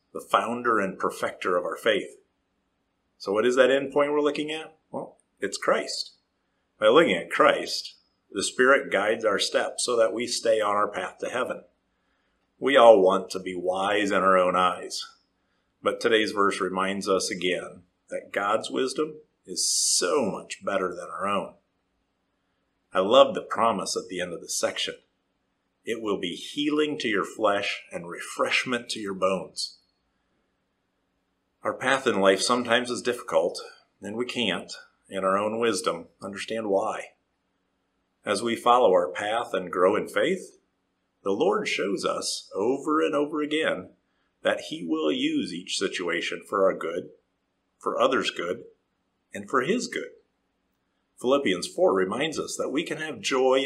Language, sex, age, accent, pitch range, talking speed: English, male, 50-69, American, 95-150 Hz, 160 wpm